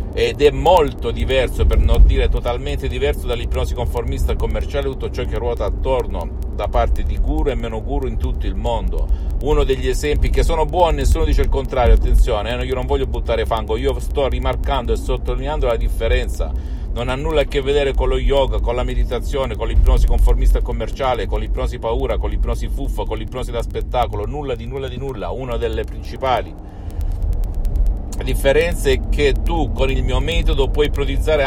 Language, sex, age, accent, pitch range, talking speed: Italian, male, 50-69, native, 70-90 Hz, 185 wpm